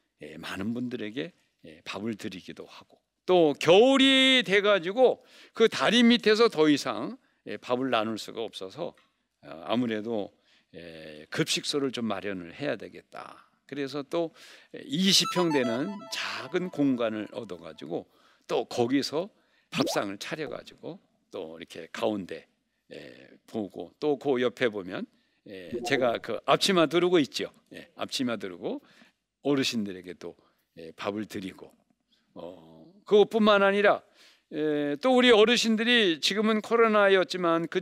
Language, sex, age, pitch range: Korean, male, 60-79, 125-205 Hz